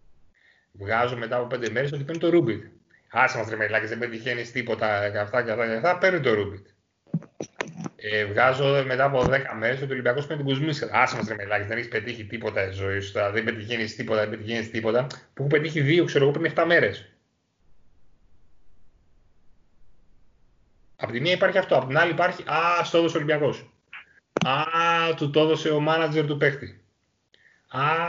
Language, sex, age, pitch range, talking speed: Greek, male, 30-49, 105-140 Hz, 160 wpm